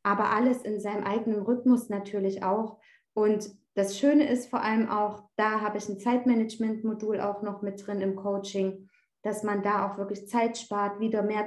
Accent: German